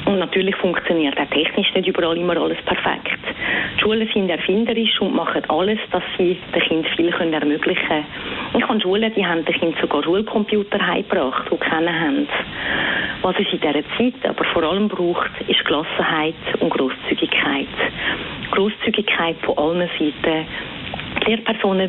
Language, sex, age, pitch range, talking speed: German, female, 40-59, 170-210 Hz, 155 wpm